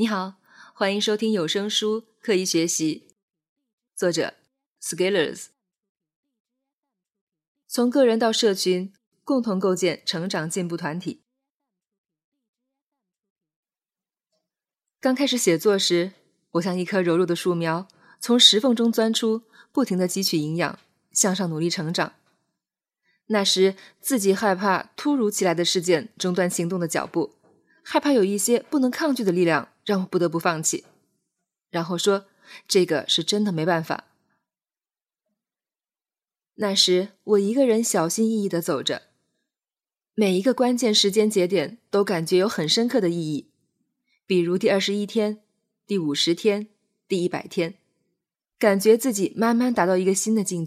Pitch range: 175-225 Hz